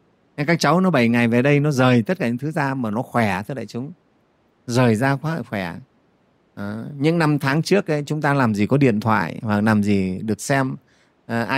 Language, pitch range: Vietnamese, 120-180 Hz